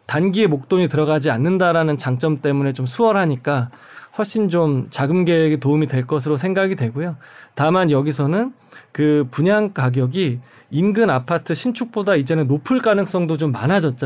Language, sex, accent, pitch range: Korean, male, native, 140-190 Hz